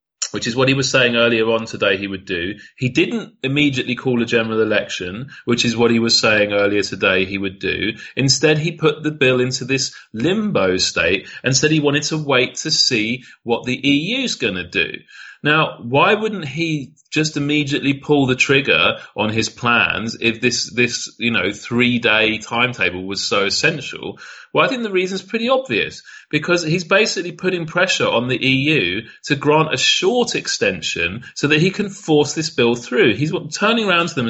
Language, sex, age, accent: Dutch, male, 30-49, British